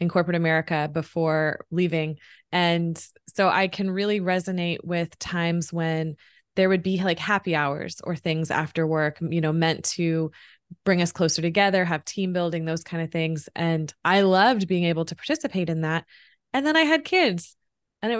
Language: English